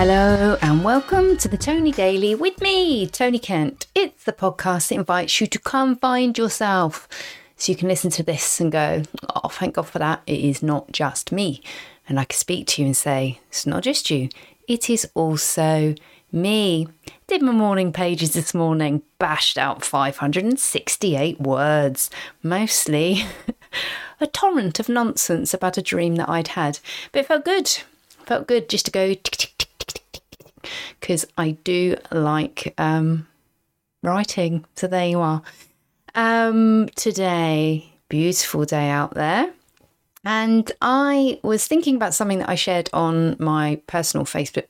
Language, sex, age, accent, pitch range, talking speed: English, female, 30-49, British, 155-220 Hz, 155 wpm